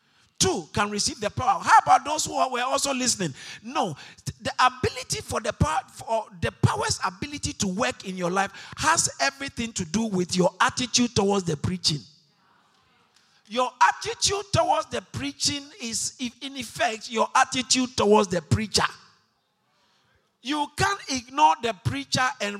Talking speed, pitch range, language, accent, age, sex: 150 wpm, 155-250 Hz, English, Nigerian, 50-69, male